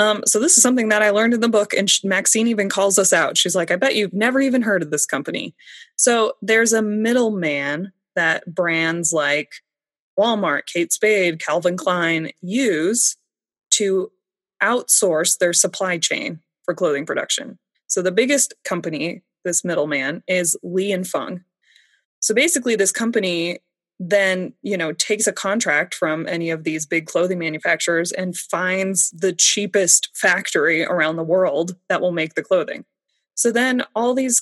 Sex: female